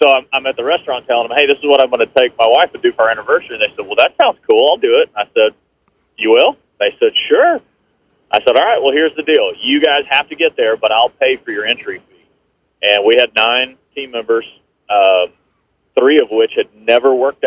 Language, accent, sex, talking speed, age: English, American, male, 250 wpm, 40-59